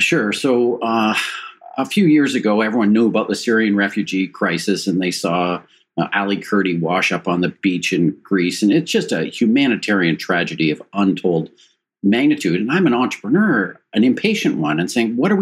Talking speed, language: 185 wpm, English